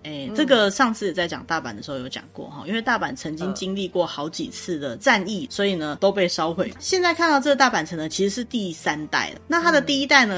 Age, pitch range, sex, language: 20-39, 160-235 Hz, female, Chinese